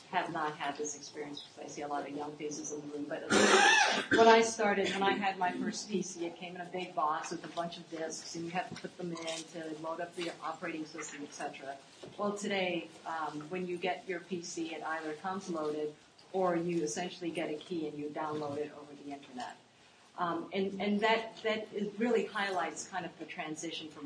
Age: 40-59